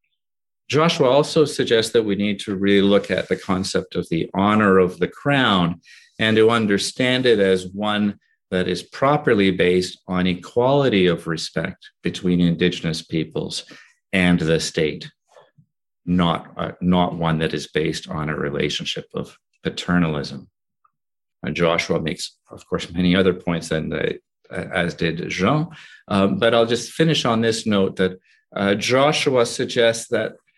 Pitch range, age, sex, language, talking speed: 90-115 Hz, 50-69, male, French, 150 wpm